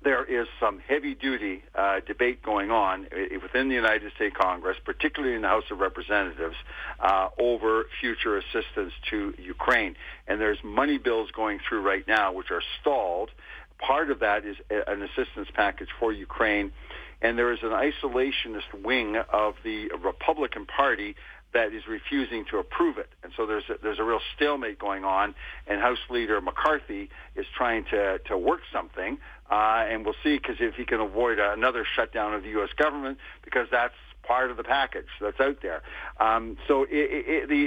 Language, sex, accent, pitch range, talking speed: English, male, American, 110-150 Hz, 180 wpm